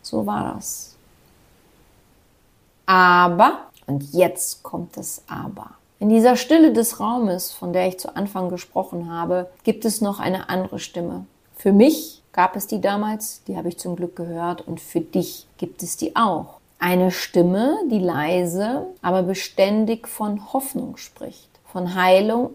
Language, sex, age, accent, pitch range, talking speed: German, female, 40-59, German, 185-230 Hz, 150 wpm